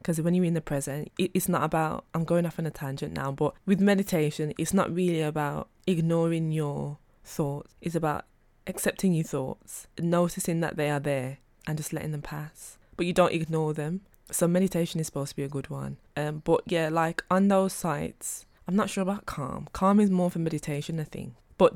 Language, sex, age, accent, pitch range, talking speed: English, female, 20-39, British, 145-175 Hz, 205 wpm